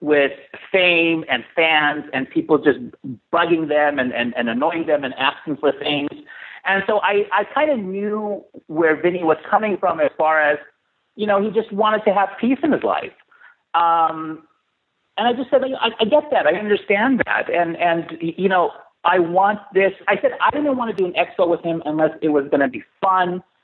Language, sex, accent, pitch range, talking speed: English, male, American, 135-205 Hz, 205 wpm